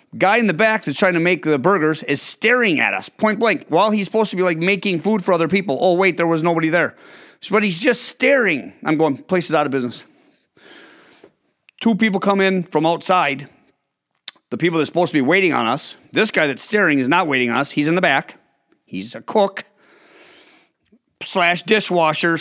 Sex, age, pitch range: male, 30-49, 180-260 Hz